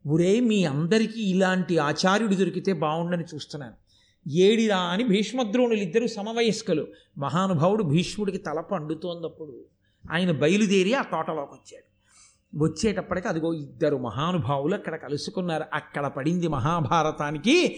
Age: 50-69